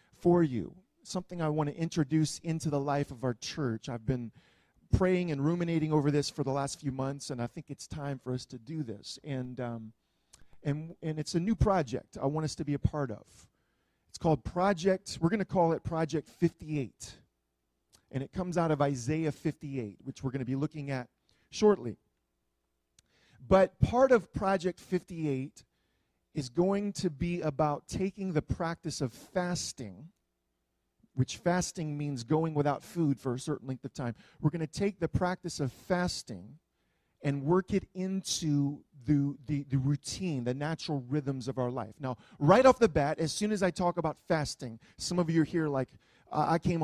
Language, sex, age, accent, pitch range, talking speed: English, male, 40-59, American, 135-175 Hz, 190 wpm